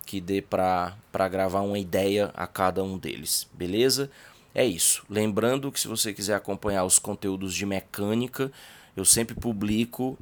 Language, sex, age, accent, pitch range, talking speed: Portuguese, male, 20-39, Brazilian, 95-115 Hz, 155 wpm